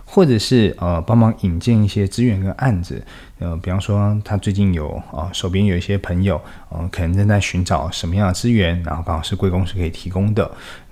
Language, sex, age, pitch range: Chinese, male, 20-39, 85-110 Hz